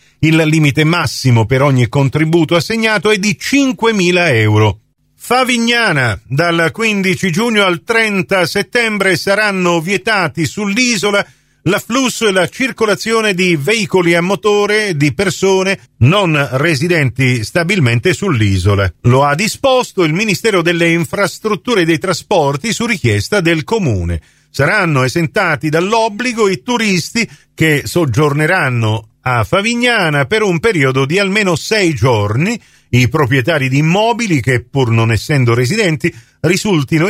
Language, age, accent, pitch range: Italian, 50-69, native, 130-200 Hz